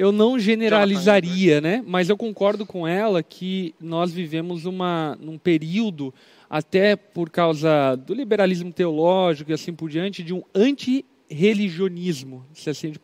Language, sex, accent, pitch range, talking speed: Portuguese, male, Brazilian, 155-195 Hz, 145 wpm